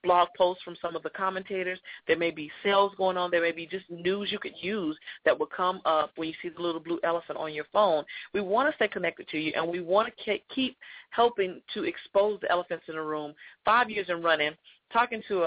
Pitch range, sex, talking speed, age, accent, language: 155-195 Hz, female, 235 wpm, 40-59, American, English